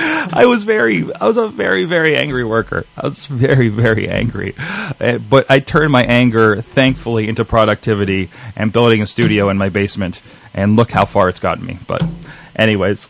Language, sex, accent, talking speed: English, male, American, 180 wpm